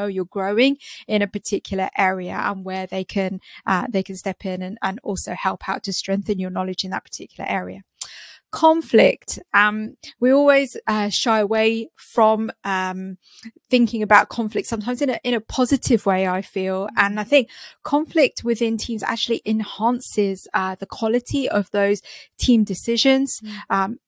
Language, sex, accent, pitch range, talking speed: English, female, British, 195-235 Hz, 160 wpm